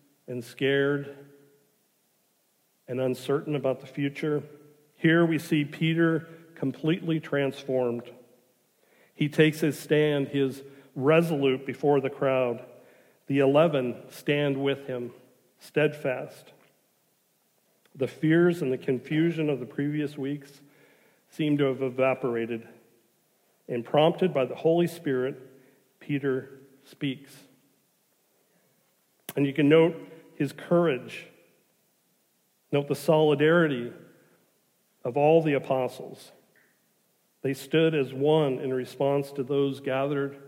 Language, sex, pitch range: English, male, 130-155 Hz